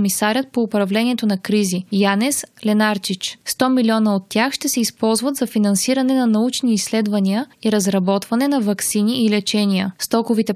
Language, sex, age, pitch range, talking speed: Bulgarian, female, 20-39, 205-245 Hz, 150 wpm